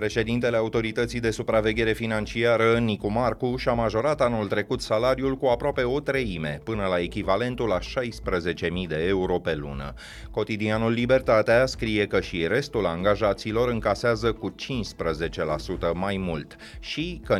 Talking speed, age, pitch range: 135 wpm, 30-49, 90-115 Hz